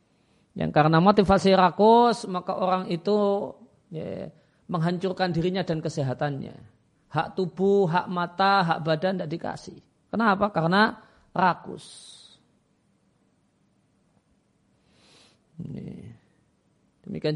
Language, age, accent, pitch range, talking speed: Indonesian, 40-59, native, 165-200 Hz, 85 wpm